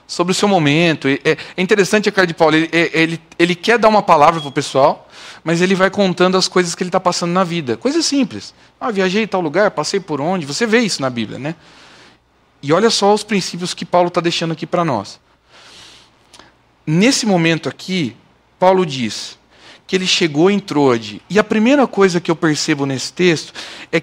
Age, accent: 40-59, Brazilian